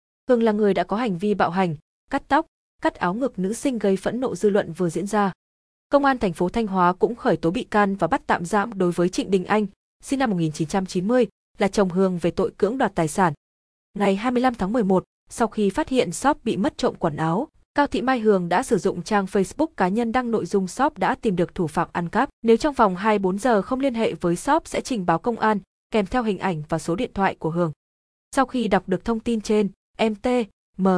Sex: female